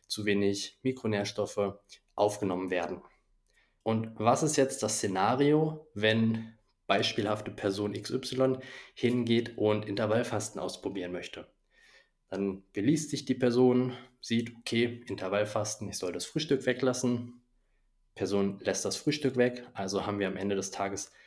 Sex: male